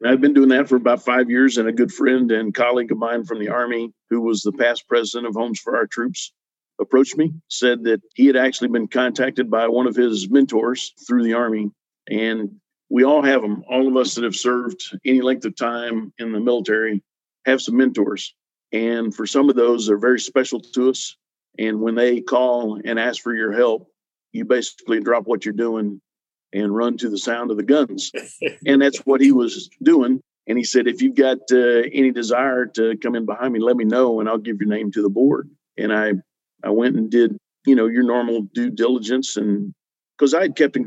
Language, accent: English, American